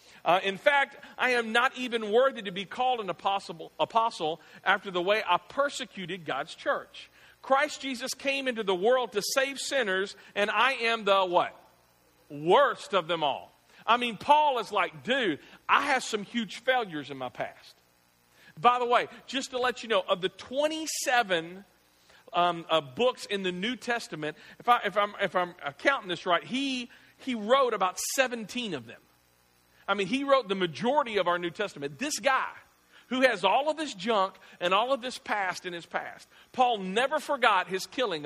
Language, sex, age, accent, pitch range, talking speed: English, male, 40-59, American, 180-260 Hz, 185 wpm